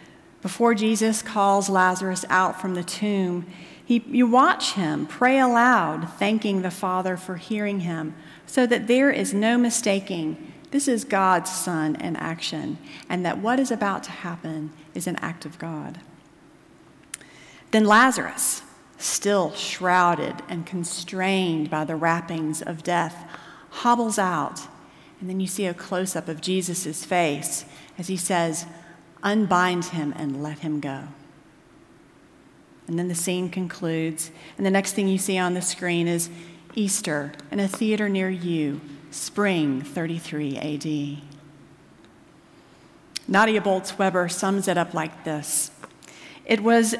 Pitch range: 165-210 Hz